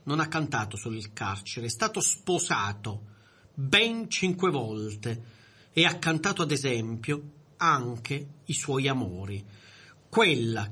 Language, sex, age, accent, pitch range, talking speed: Italian, male, 40-59, native, 110-160 Hz, 125 wpm